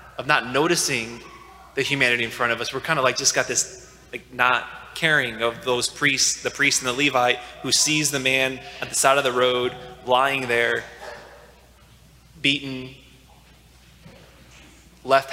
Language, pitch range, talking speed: English, 120-140 Hz, 160 wpm